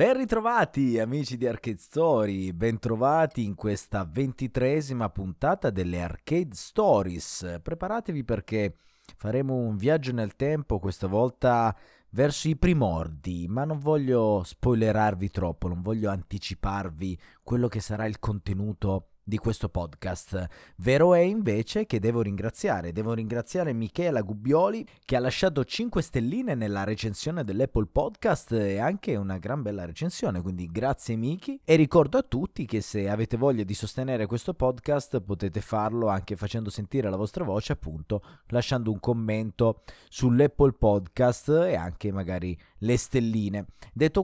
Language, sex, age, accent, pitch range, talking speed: Italian, male, 30-49, native, 100-140 Hz, 140 wpm